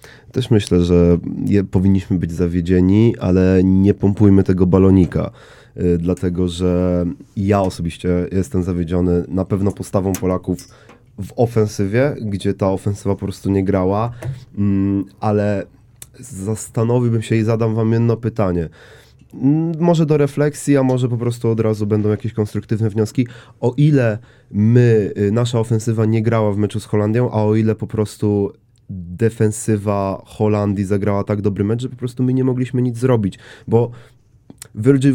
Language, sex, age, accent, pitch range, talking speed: Polish, male, 30-49, native, 95-115 Hz, 150 wpm